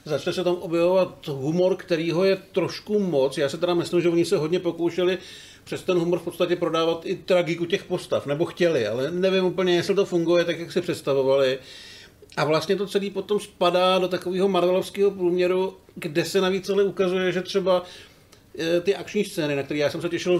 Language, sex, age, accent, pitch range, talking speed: Czech, male, 50-69, native, 140-180 Hz, 195 wpm